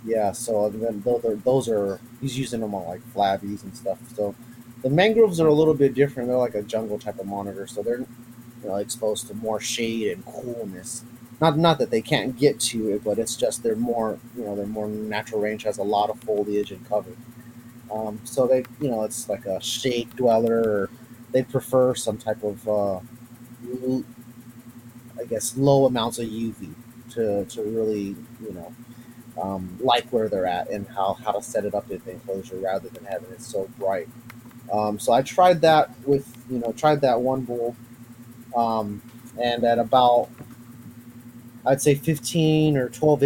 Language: English